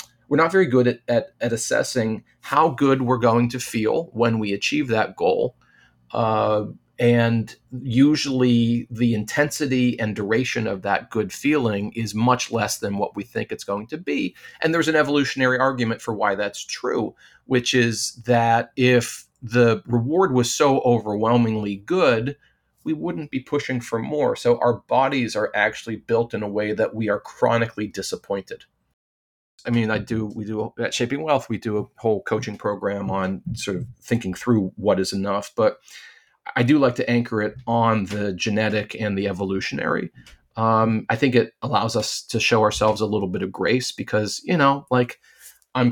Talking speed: 175 wpm